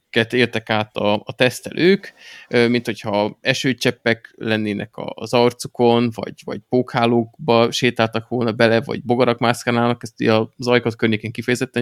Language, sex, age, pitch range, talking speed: Hungarian, male, 20-39, 110-135 Hz, 125 wpm